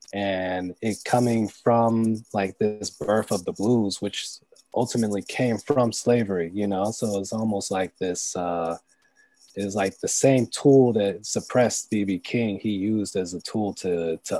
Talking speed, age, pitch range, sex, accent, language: 165 wpm, 20-39, 100-120 Hz, male, American, English